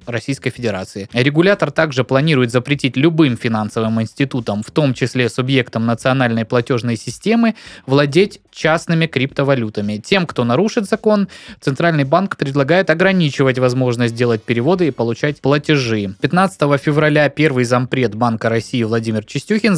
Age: 20-39